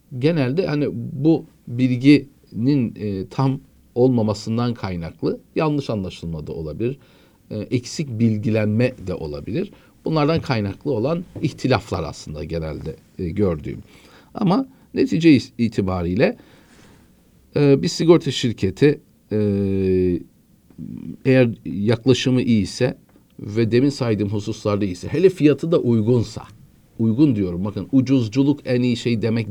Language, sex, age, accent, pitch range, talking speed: Turkish, male, 50-69, native, 105-145 Hz, 110 wpm